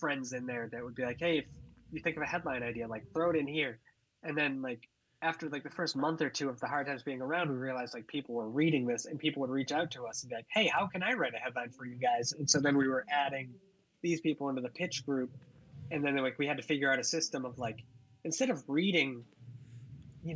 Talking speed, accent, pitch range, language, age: 270 wpm, American, 130-155 Hz, English, 20-39